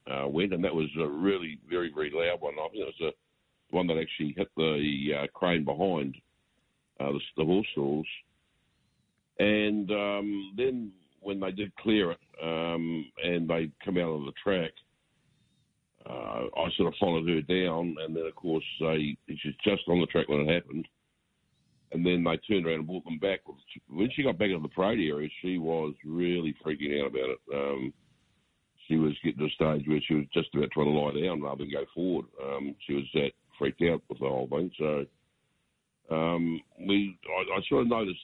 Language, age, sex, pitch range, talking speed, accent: English, 60-79, male, 75-95 Hz, 200 wpm, Australian